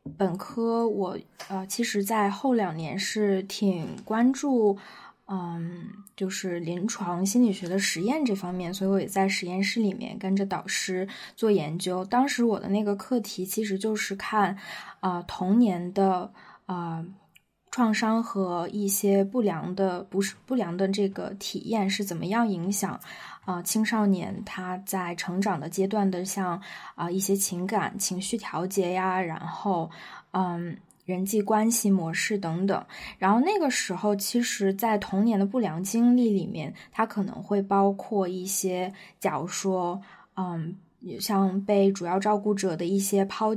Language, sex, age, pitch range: Chinese, female, 20-39, 190-220 Hz